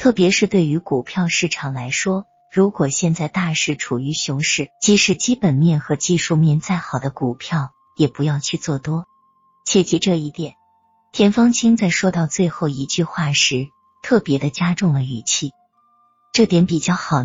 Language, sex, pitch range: Chinese, female, 145-210 Hz